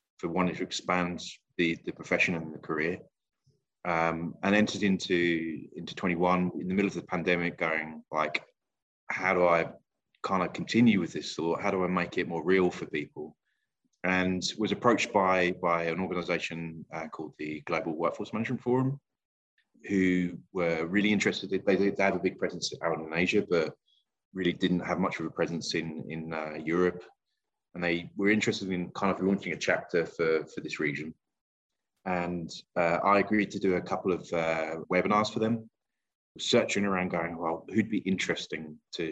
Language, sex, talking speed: English, male, 180 wpm